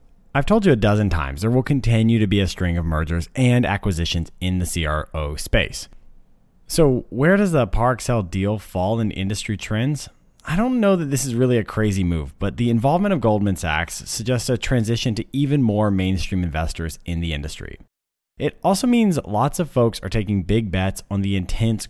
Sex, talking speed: male, 195 wpm